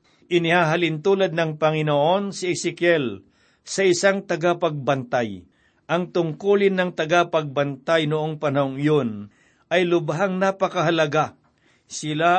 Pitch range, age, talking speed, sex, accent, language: 150-175 Hz, 60-79, 95 wpm, male, native, Filipino